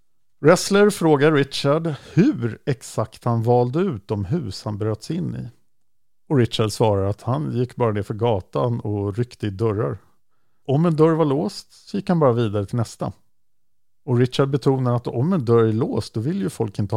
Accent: Norwegian